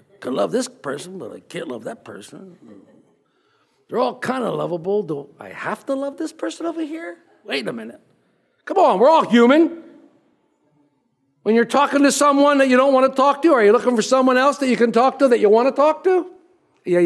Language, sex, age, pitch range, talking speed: English, male, 60-79, 210-310 Hz, 220 wpm